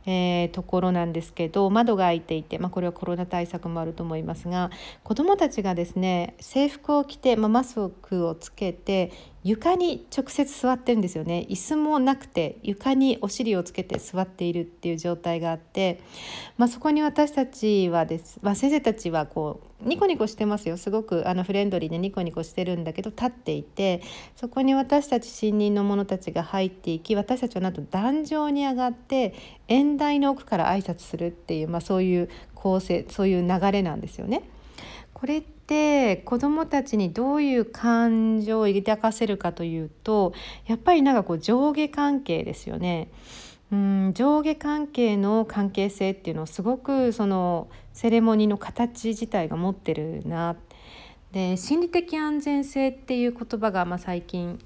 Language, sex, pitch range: Japanese, female, 175-250 Hz